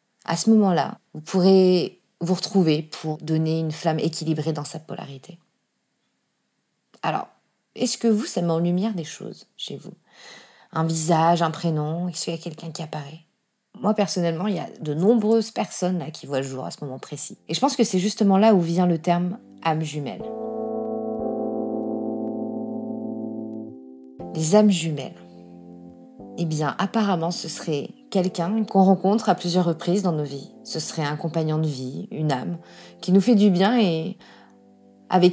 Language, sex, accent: French, female, French